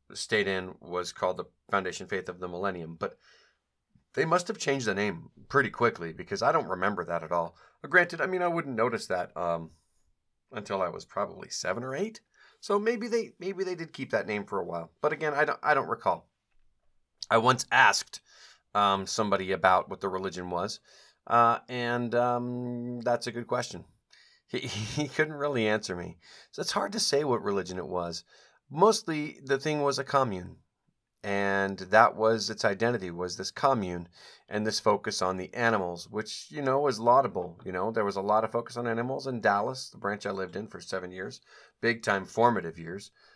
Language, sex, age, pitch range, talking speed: English, male, 40-59, 95-140 Hz, 195 wpm